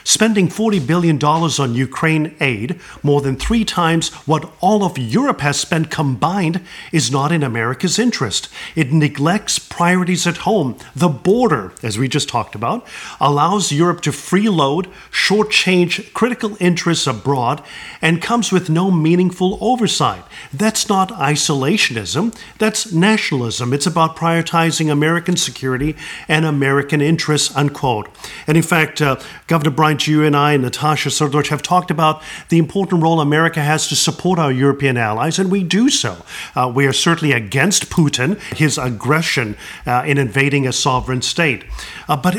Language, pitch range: English, 145-185 Hz